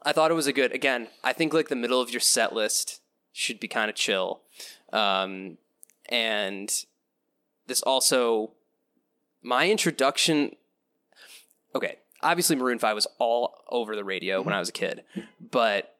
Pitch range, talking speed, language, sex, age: 105-130 Hz, 155 wpm, English, male, 20-39